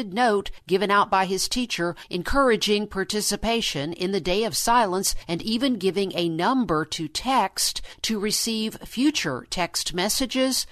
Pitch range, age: 170-215 Hz, 50-69